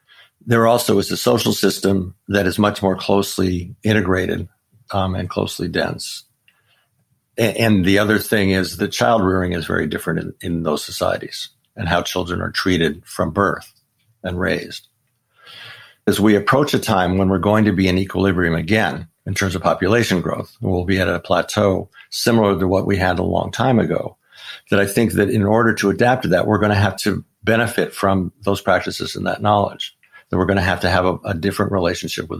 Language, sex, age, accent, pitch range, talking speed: English, male, 60-79, American, 95-105 Hz, 200 wpm